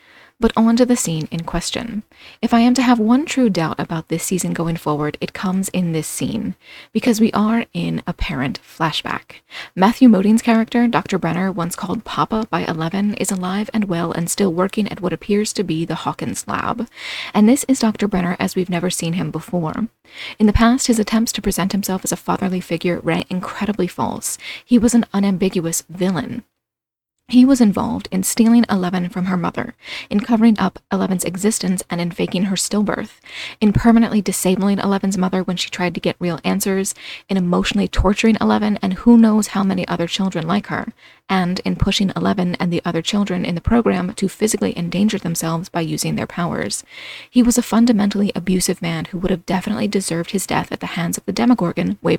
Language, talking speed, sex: English, 195 wpm, female